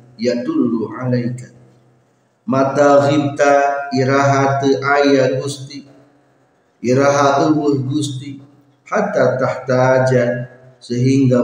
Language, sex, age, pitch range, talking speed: Indonesian, male, 50-69, 120-140 Hz, 75 wpm